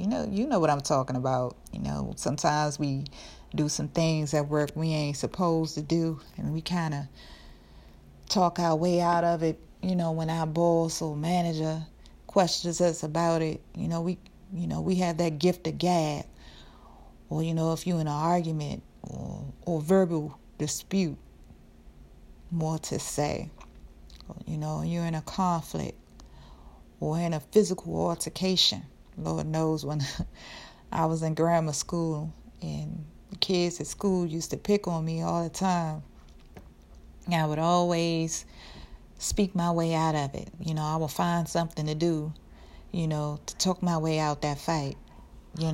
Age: 40-59